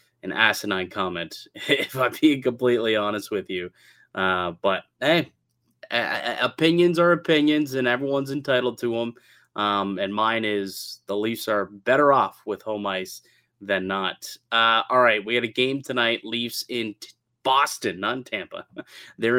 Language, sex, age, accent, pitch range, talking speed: English, male, 20-39, American, 105-125 Hz, 165 wpm